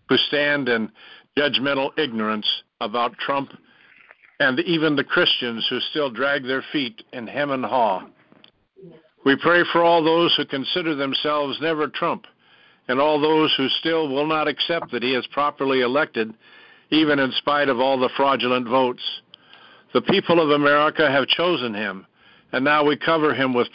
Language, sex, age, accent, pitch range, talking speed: English, male, 60-79, American, 125-155 Hz, 160 wpm